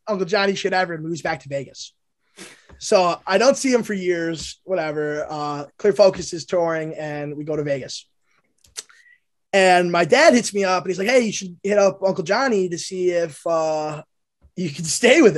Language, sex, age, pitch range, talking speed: English, male, 20-39, 160-205 Hz, 195 wpm